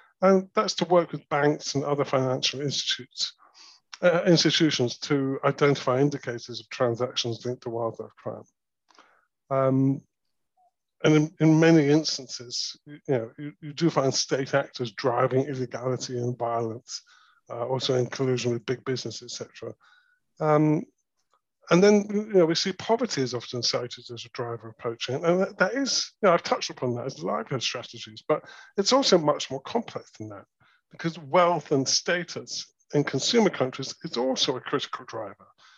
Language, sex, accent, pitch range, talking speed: English, male, British, 125-160 Hz, 160 wpm